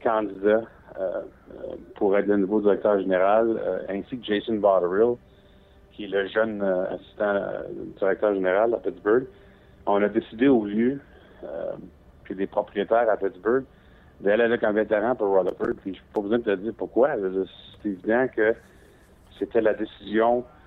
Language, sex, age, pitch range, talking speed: French, male, 60-79, 95-110 Hz, 165 wpm